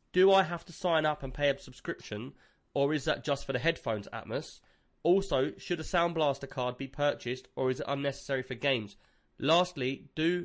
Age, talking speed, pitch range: 20-39, 195 wpm, 130-155 Hz